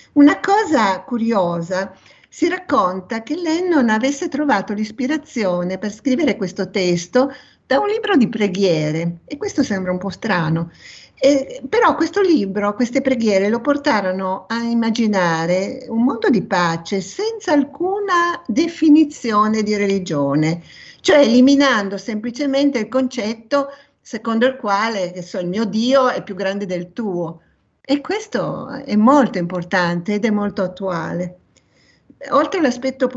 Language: Italian